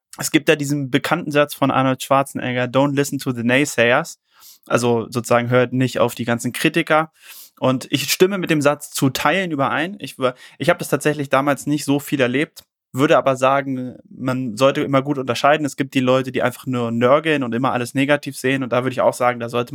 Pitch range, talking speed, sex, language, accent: 125-145 Hz, 215 wpm, male, German, German